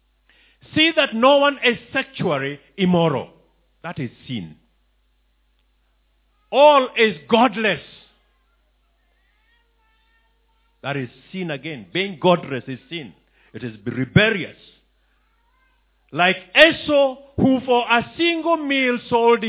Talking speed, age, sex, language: 100 wpm, 50-69, male, English